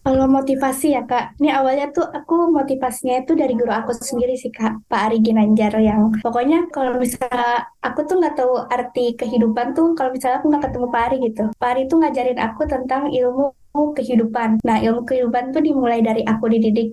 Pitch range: 230-270 Hz